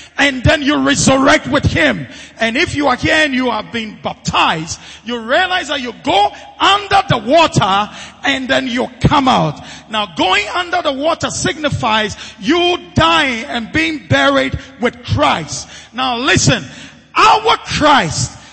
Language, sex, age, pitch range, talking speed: English, male, 40-59, 240-335 Hz, 150 wpm